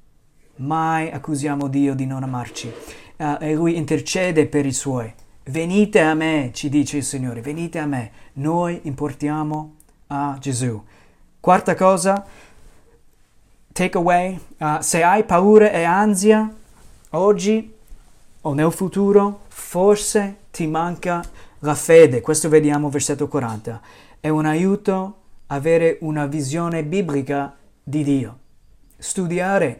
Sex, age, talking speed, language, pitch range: male, 30-49, 115 wpm, Italian, 140-180 Hz